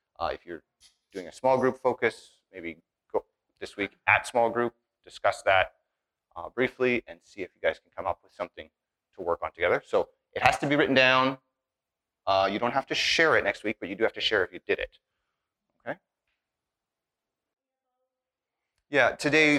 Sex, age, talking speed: male, 30-49, 190 wpm